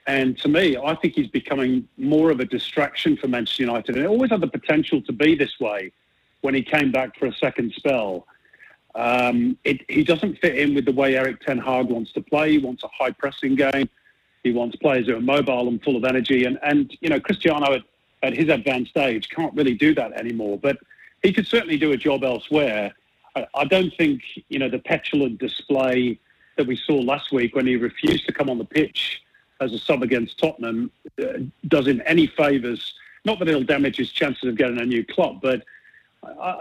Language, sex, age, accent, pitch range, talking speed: English, male, 40-59, British, 120-145 Hz, 215 wpm